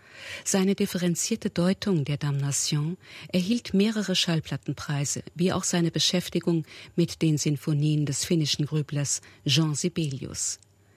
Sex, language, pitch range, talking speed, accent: female, German, 150-190 Hz, 110 wpm, German